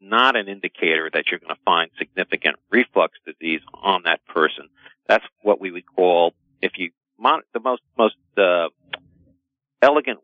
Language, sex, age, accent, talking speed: English, male, 50-69, American, 160 wpm